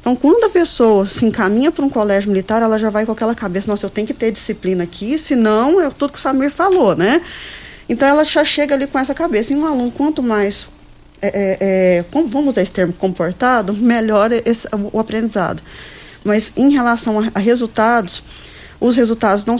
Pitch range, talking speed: 195-230 Hz, 200 wpm